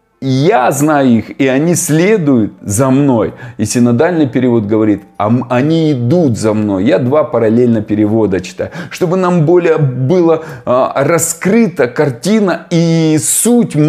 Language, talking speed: Russian, 125 wpm